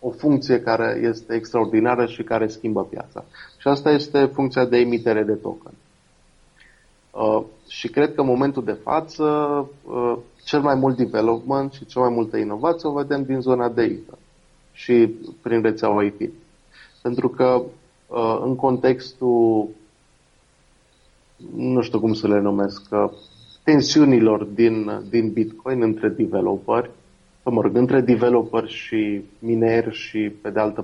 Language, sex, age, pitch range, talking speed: Romanian, male, 30-49, 110-135 Hz, 130 wpm